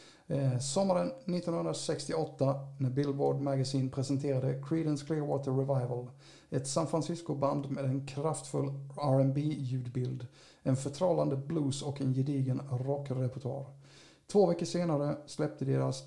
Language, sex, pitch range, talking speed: Swedish, male, 130-145 Hz, 105 wpm